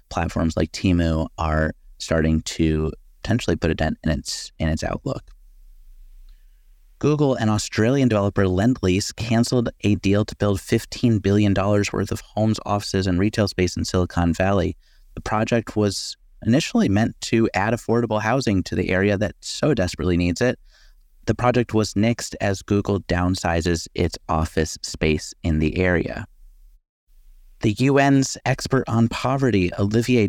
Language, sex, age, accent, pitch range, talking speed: English, male, 30-49, American, 90-110 Hz, 145 wpm